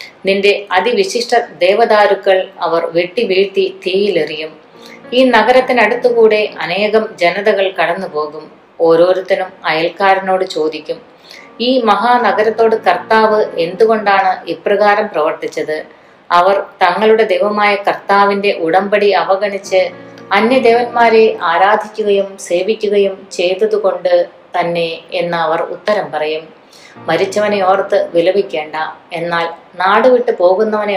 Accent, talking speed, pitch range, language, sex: native, 80 wpm, 170-215 Hz, Malayalam, female